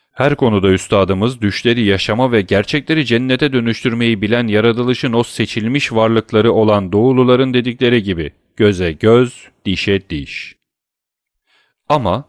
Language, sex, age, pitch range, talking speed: Turkish, male, 40-59, 100-130 Hz, 110 wpm